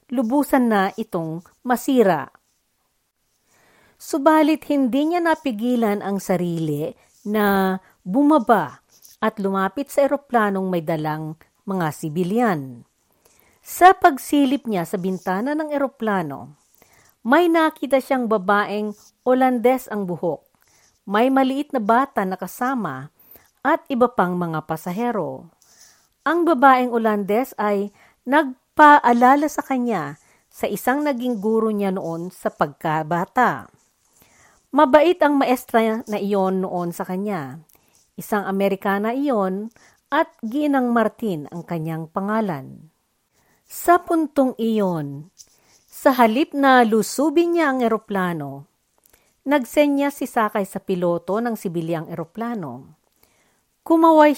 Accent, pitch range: native, 190-270 Hz